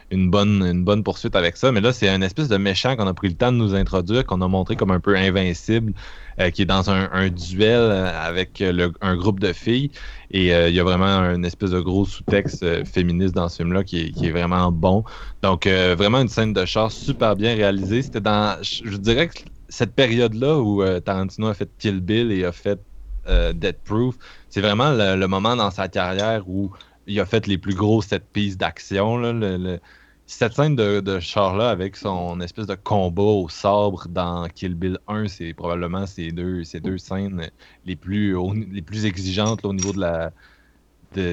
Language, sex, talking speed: French, male, 215 wpm